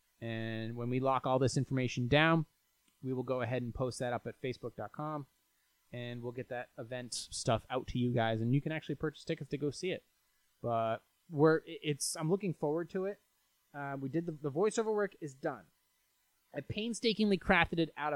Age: 20-39